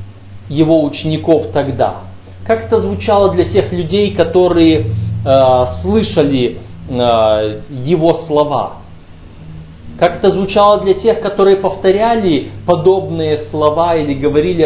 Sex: male